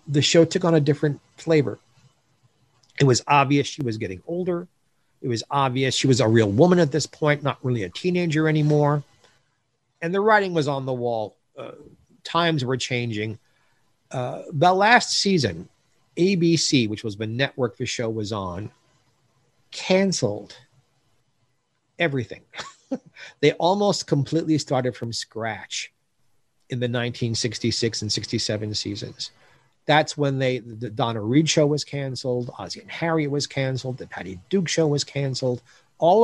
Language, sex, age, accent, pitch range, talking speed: English, male, 40-59, American, 115-150 Hz, 145 wpm